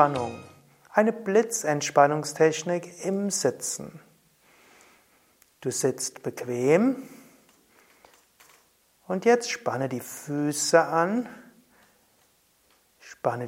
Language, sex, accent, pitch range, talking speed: German, male, German, 135-195 Hz, 60 wpm